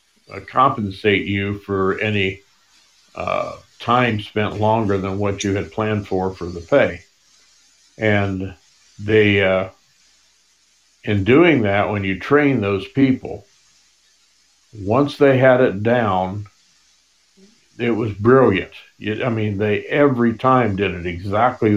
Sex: male